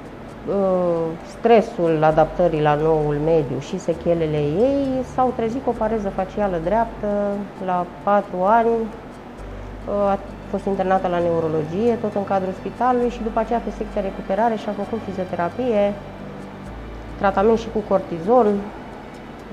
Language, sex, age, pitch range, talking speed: Romanian, female, 30-49, 190-245 Hz, 125 wpm